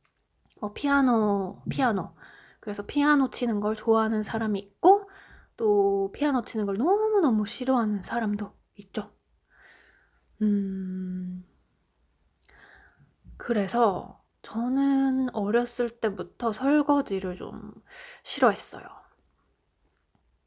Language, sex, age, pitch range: Korean, female, 20-39, 205-295 Hz